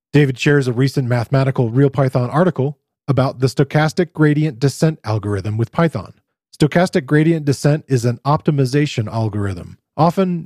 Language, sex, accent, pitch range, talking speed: English, male, American, 120-155 Hz, 130 wpm